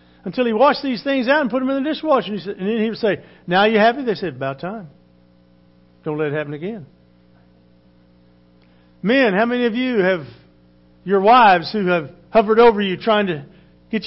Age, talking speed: 50-69, 190 wpm